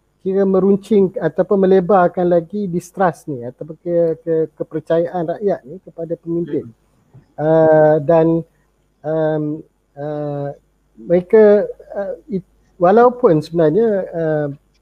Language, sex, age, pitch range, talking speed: Malay, male, 30-49, 155-190 Hz, 100 wpm